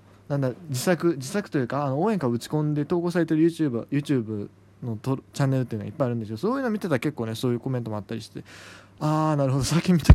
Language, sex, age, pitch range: Japanese, male, 20-39, 115-160 Hz